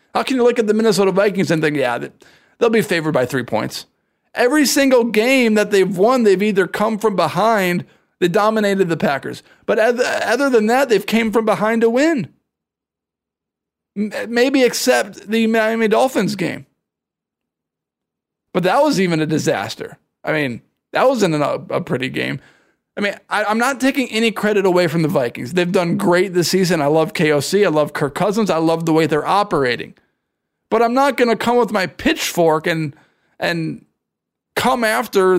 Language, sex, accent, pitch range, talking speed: English, male, American, 180-230 Hz, 175 wpm